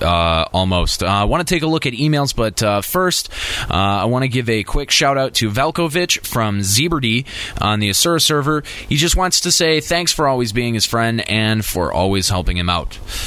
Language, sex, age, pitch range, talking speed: English, male, 20-39, 100-150 Hz, 215 wpm